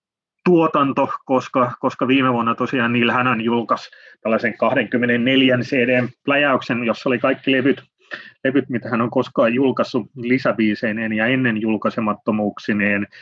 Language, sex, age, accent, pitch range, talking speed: Finnish, male, 30-49, native, 110-130 Hz, 125 wpm